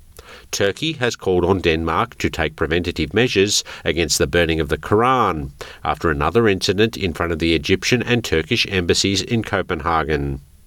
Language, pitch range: English, 80-105 Hz